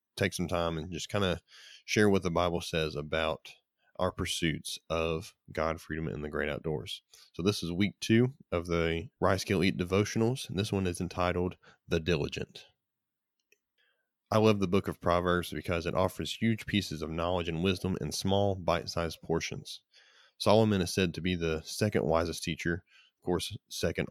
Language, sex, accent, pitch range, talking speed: English, male, American, 85-95 Hz, 175 wpm